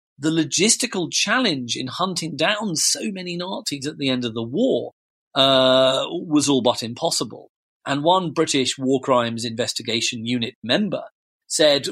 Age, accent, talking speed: 40-59, British, 145 wpm